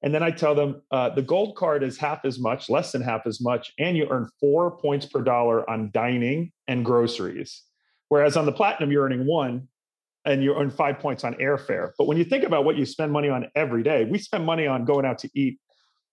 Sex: male